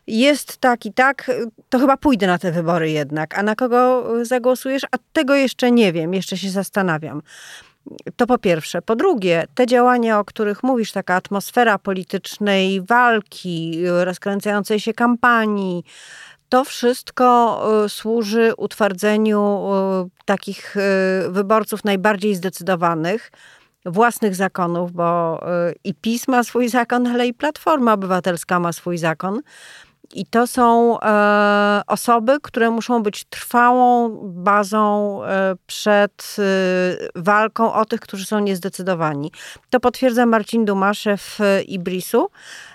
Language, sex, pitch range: Polish, female, 185-245 Hz